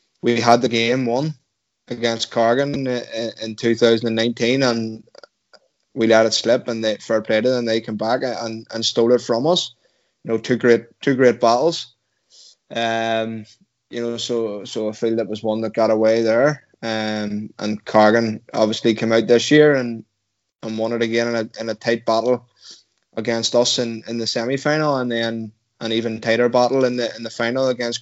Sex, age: male, 20-39